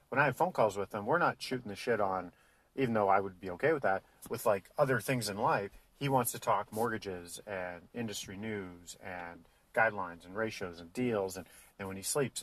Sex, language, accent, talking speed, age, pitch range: male, English, American, 220 wpm, 40-59, 95-130 Hz